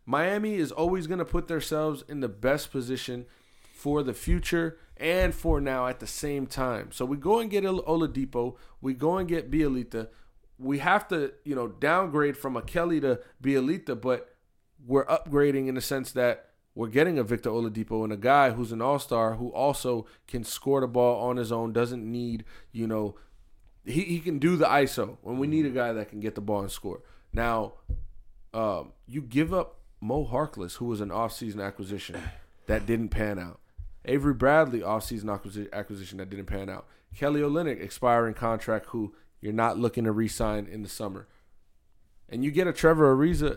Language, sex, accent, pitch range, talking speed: English, male, American, 110-145 Hz, 185 wpm